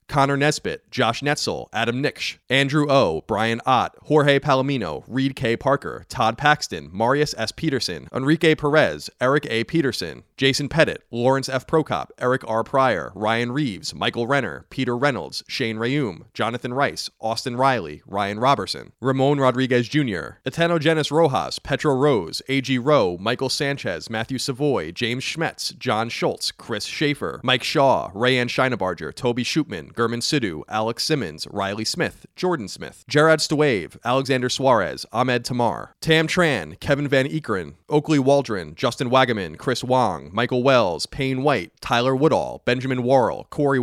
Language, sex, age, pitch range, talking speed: English, male, 30-49, 120-145 Hz, 145 wpm